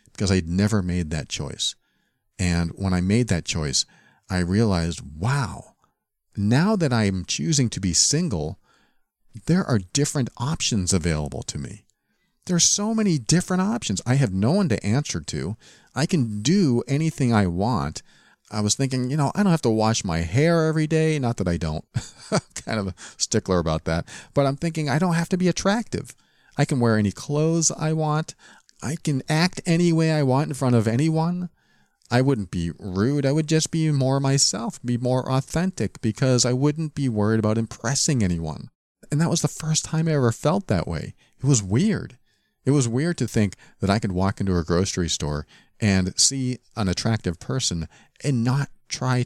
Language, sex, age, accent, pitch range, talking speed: English, male, 40-59, American, 100-150 Hz, 190 wpm